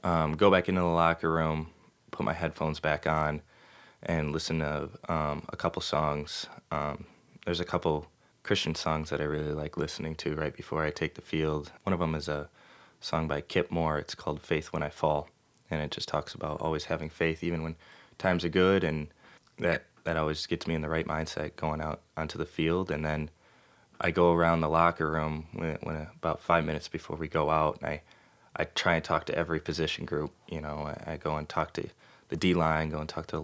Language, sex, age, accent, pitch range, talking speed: English, male, 20-39, American, 75-85 Hz, 220 wpm